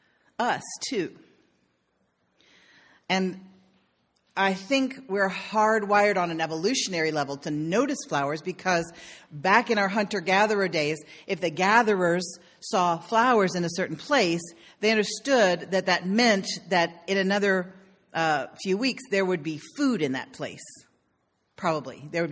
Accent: American